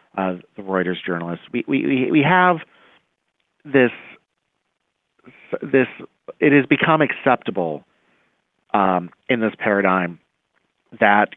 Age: 40-59